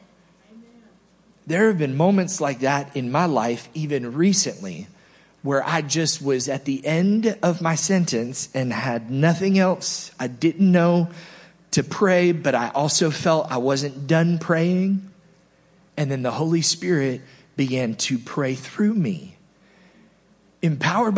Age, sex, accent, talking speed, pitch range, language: 30-49, male, American, 140 wpm, 135-185 Hz, English